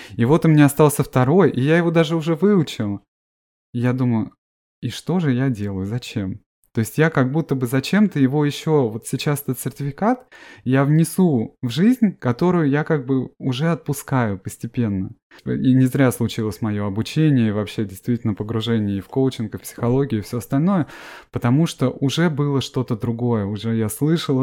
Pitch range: 115-155 Hz